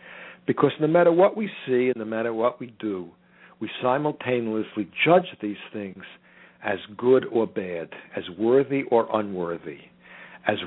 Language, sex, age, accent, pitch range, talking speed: English, male, 60-79, American, 110-145 Hz, 145 wpm